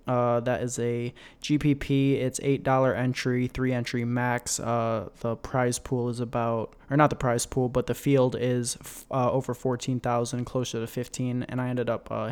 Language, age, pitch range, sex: English, 20-39, 120-135 Hz, male